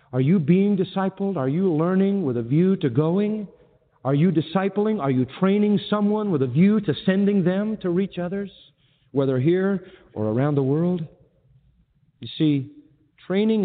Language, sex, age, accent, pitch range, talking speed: English, male, 50-69, American, 130-180 Hz, 165 wpm